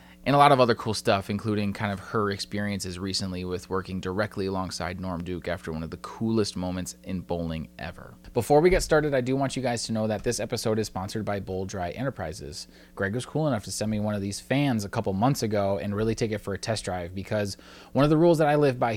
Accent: American